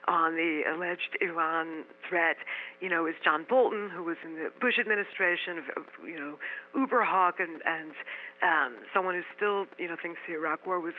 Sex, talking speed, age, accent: female, 180 wpm, 50-69, American